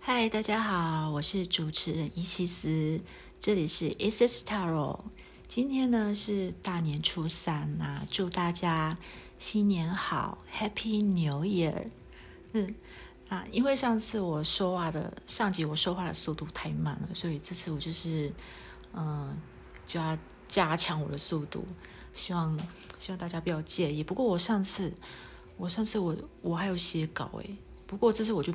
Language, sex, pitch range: Chinese, female, 155-195 Hz